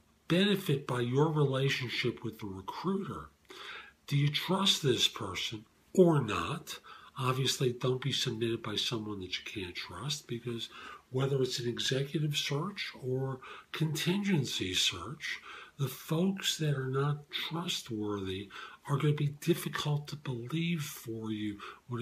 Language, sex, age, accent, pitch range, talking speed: English, male, 50-69, American, 115-160 Hz, 135 wpm